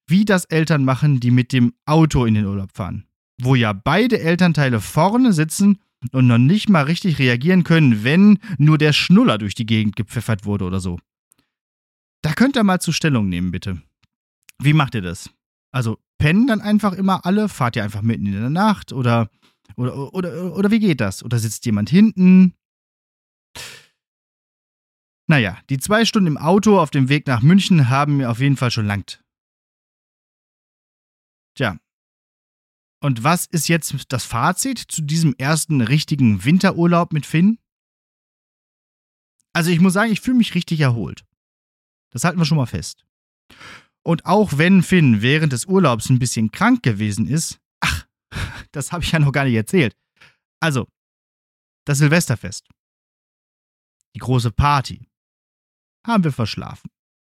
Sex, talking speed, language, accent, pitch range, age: male, 155 wpm, German, German, 115-175 Hz, 30-49